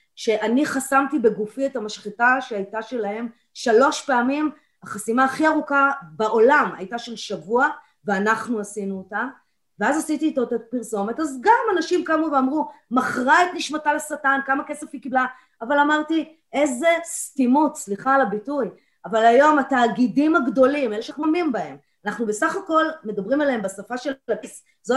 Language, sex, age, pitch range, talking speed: Hebrew, female, 30-49, 220-300 Hz, 140 wpm